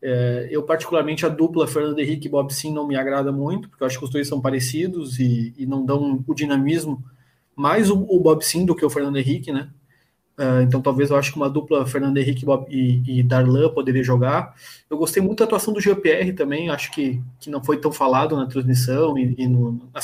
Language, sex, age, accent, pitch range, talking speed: Portuguese, male, 20-39, Brazilian, 135-160 Hz, 220 wpm